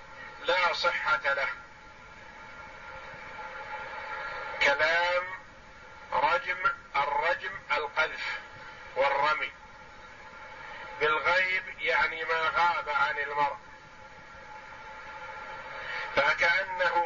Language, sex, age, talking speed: Arabic, male, 50-69, 55 wpm